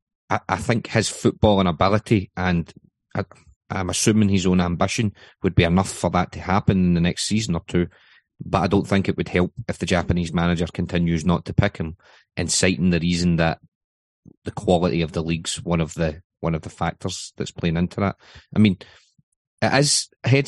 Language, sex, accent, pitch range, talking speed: English, male, British, 90-105 Hz, 190 wpm